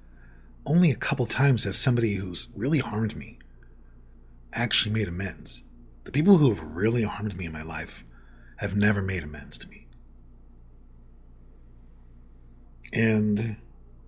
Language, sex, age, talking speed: English, male, 40-59, 130 wpm